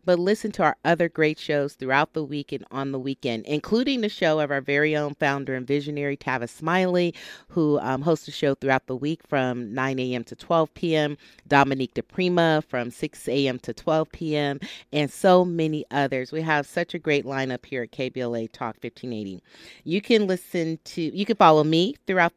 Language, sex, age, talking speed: English, female, 30-49, 195 wpm